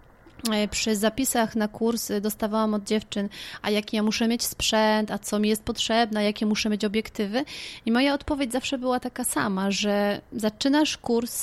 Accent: native